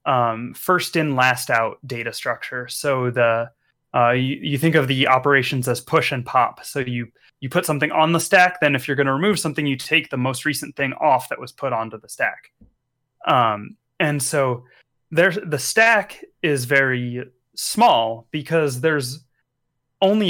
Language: English